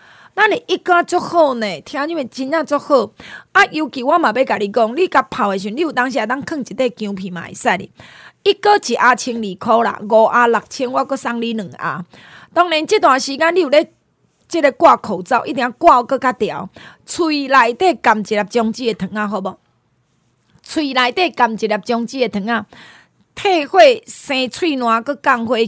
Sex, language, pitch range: female, Chinese, 215-300 Hz